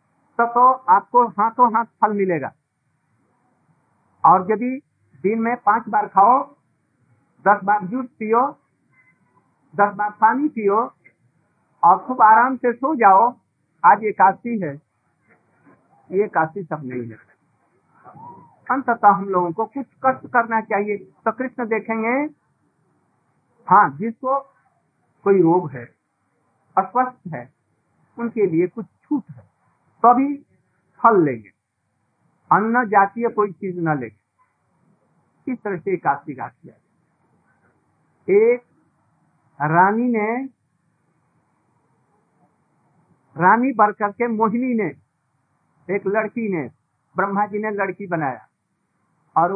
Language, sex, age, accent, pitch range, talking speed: Hindi, male, 50-69, native, 165-230 Hz, 100 wpm